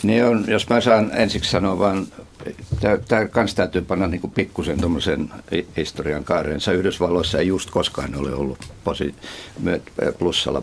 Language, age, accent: Finnish, 60-79, native